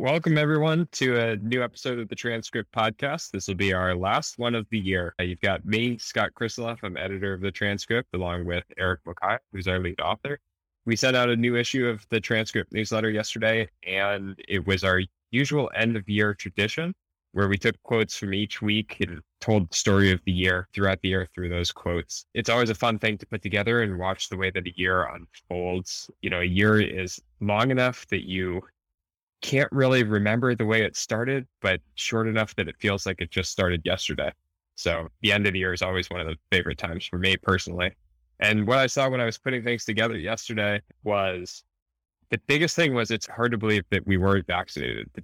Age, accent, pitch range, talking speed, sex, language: 10-29, American, 90-115 Hz, 215 wpm, male, English